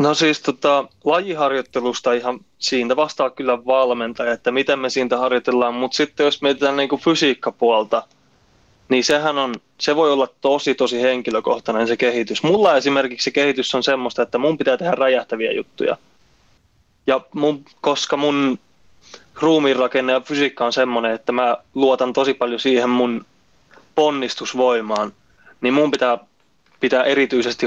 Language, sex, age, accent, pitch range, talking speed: Finnish, male, 20-39, native, 120-140 Hz, 140 wpm